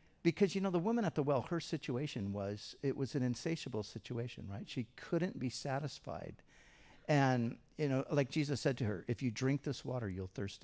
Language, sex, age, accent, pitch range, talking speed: English, male, 50-69, American, 115-155 Hz, 205 wpm